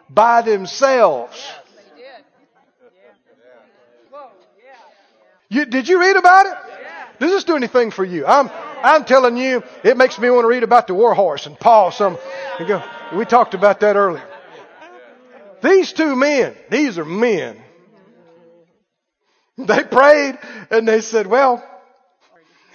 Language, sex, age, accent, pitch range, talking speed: English, male, 50-69, American, 215-305 Hz, 125 wpm